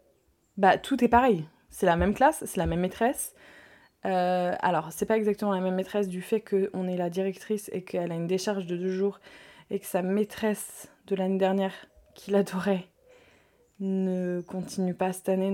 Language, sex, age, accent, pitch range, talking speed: French, female, 20-39, French, 190-230 Hz, 190 wpm